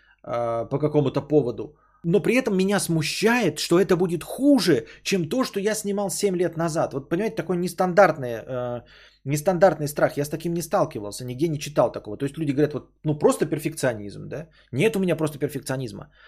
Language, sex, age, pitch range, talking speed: Bulgarian, male, 20-39, 125-170 Hz, 180 wpm